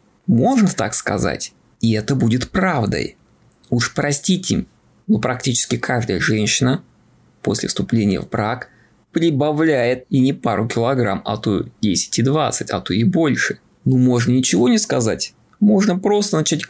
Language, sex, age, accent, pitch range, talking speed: Russian, male, 20-39, native, 115-155 Hz, 140 wpm